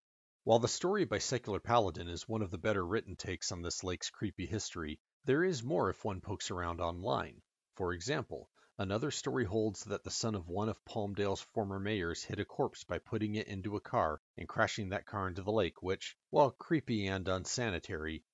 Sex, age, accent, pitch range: male, 40-59, American, 90-110 Hz